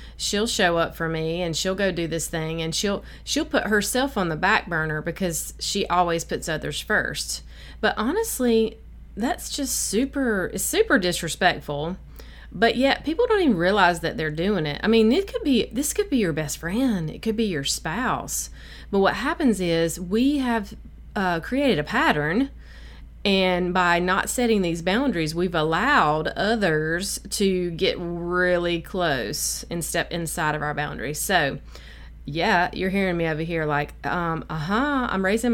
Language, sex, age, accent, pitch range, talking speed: English, female, 30-49, American, 160-220 Hz, 170 wpm